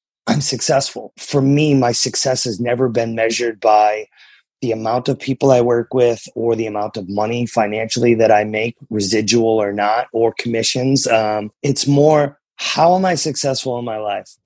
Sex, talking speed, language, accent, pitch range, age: male, 175 wpm, English, American, 115-130 Hz, 30-49